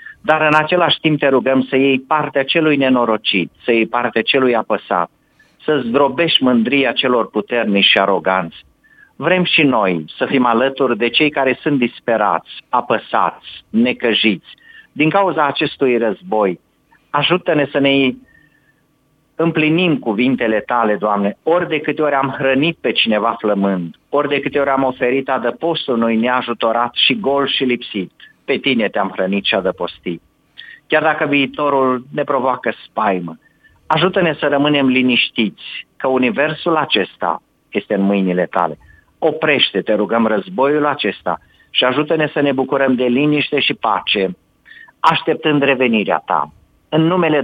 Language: Romanian